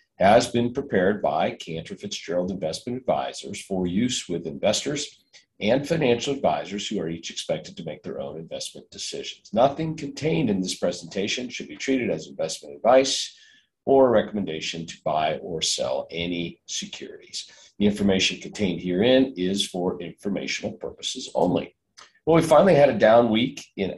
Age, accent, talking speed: 50-69, American, 155 wpm